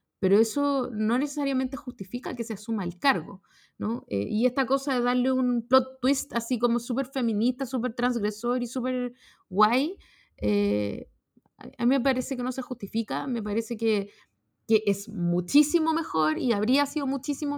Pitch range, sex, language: 210-265 Hz, female, Spanish